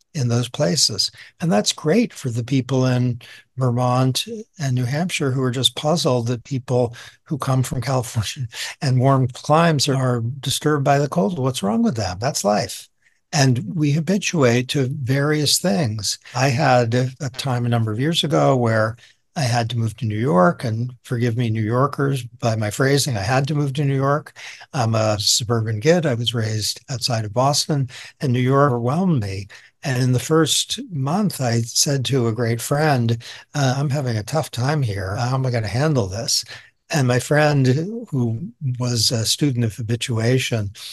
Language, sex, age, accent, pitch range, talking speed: English, male, 60-79, American, 115-145 Hz, 185 wpm